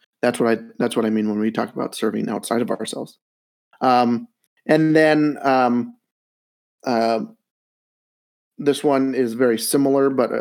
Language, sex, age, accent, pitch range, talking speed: English, male, 30-49, American, 115-130 Hz, 150 wpm